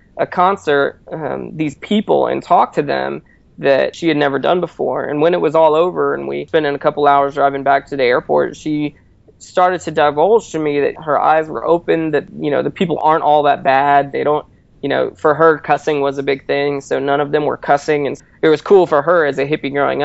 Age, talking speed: 20-39, 240 wpm